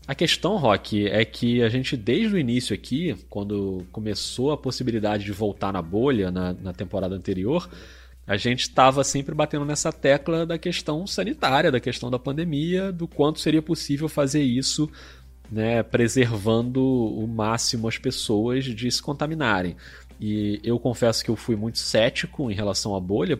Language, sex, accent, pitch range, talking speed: Portuguese, male, Brazilian, 100-135 Hz, 165 wpm